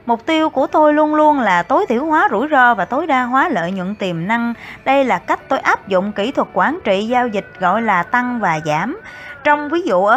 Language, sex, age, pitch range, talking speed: Vietnamese, female, 20-39, 205-290 Hz, 240 wpm